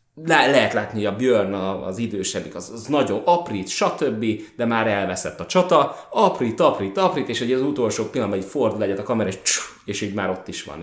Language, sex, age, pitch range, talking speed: Hungarian, male, 20-39, 95-130 Hz, 215 wpm